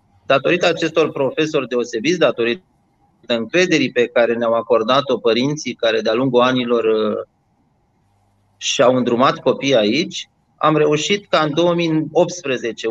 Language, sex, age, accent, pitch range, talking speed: Romanian, male, 30-49, native, 125-155 Hz, 110 wpm